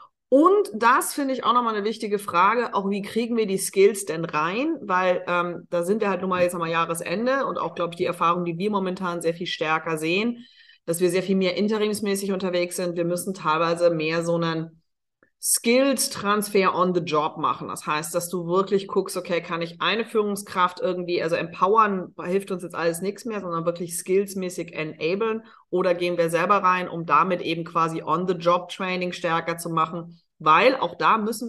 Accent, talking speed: German, 195 wpm